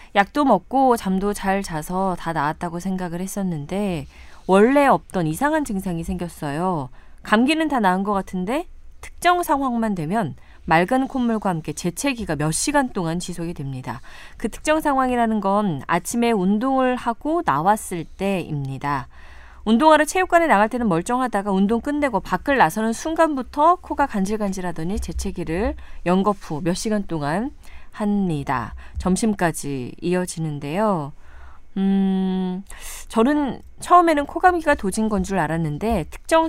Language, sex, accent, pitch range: Korean, female, native, 170-245 Hz